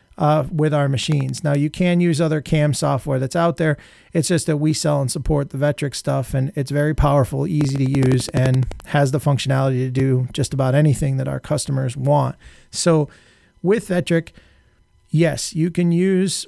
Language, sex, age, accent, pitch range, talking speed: English, male, 40-59, American, 135-160 Hz, 185 wpm